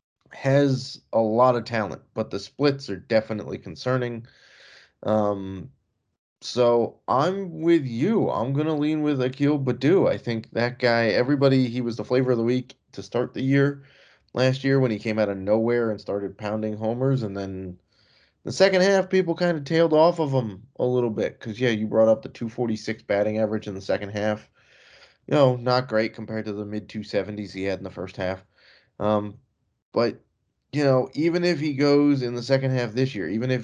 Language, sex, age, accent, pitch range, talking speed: English, male, 20-39, American, 105-130 Hz, 200 wpm